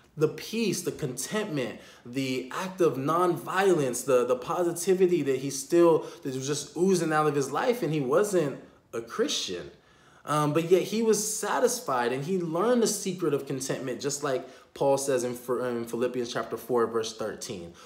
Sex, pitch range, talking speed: male, 140-185 Hz, 175 wpm